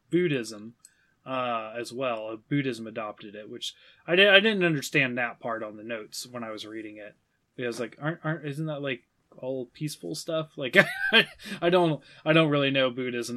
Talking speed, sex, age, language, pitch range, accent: 185 wpm, male, 20-39, English, 120-150 Hz, American